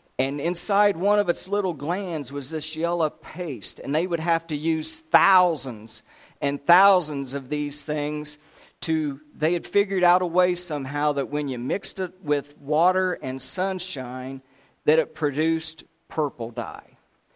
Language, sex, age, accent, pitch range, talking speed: English, male, 50-69, American, 135-165 Hz, 155 wpm